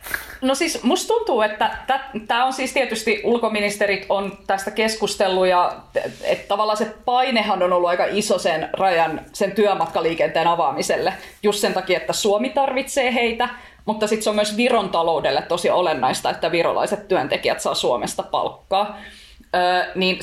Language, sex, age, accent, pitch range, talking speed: Finnish, female, 20-39, native, 180-220 Hz, 145 wpm